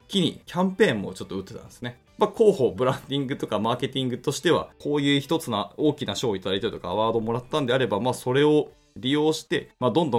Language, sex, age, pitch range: Japanese, male, 20-39, 105-150 Hz